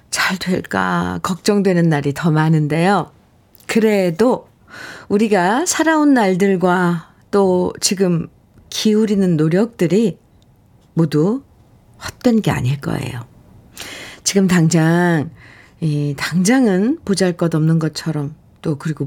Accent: native